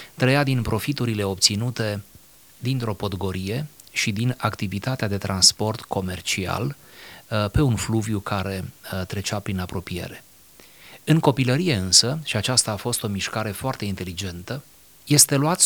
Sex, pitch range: male, 100-125 Hz